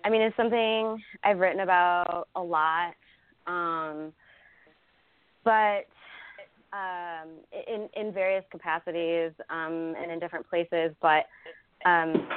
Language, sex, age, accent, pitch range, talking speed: English, female, 20-39, American, 160-195 Hz, 110 wpm